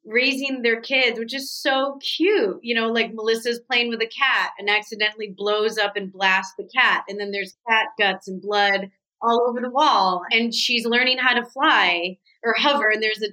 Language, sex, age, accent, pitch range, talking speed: English, female, 30-49, American, 200-250 Hz, 205 wpm